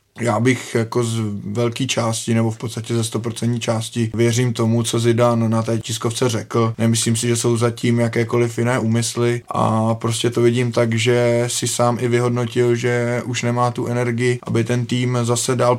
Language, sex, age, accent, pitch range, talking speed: Czech, male, 20-39, native, 115-120 Hz, 180 wpm